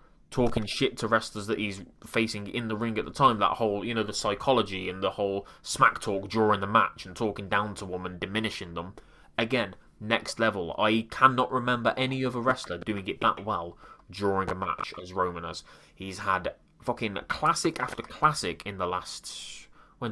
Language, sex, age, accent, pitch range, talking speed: English, male, 20-39, British, 100-120 Hz, 190 wpm